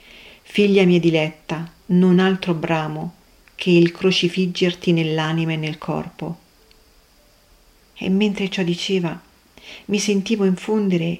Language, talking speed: Italian, 105 wpm